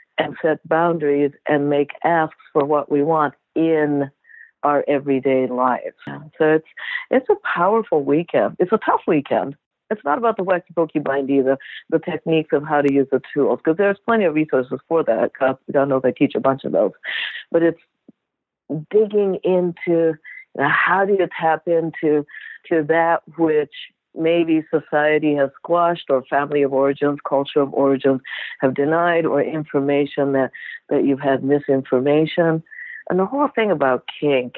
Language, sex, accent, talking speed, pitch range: English, female, American, 170 wpm, 135-165 Hz